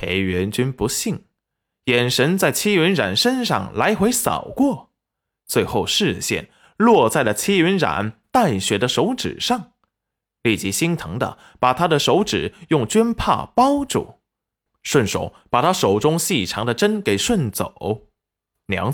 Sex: male